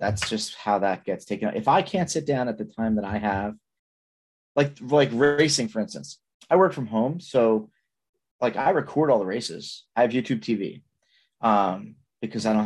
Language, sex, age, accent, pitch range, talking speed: English, male, 30-49, American, 100-135 Hz, 195 wpm